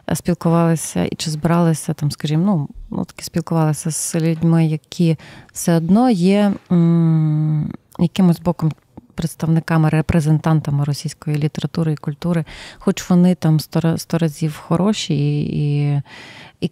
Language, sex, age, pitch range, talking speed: Ukrainian, female, 30-49, 155-180 Hz, 120 wpm